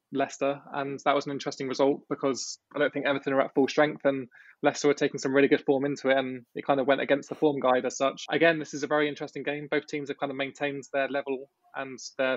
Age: 20-39